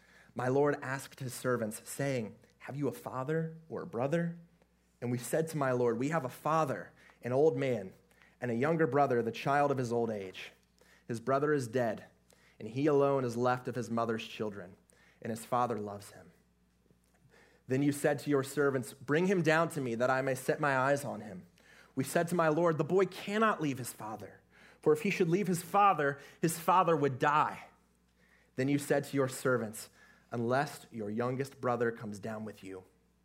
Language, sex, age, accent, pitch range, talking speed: English, male, 30-49, American, 120-160 Hz, 195 wpm